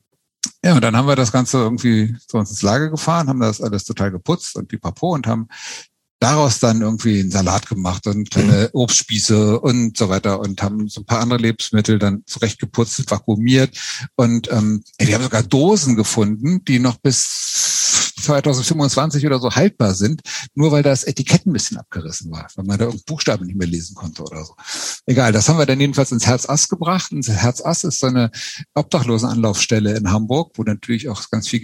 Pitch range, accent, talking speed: 105-130 Hz, German, 195 wpm